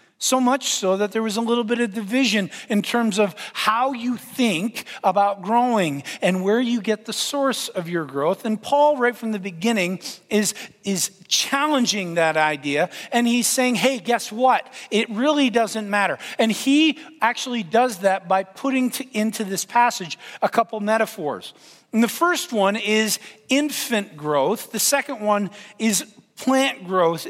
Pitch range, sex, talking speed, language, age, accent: 195-240 Hz, male, 165 wpm, English, 40-59, American